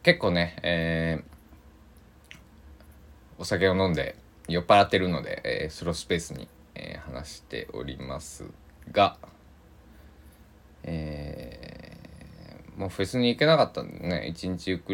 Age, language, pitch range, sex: 20-39, Japanese, 75-100 Hz, male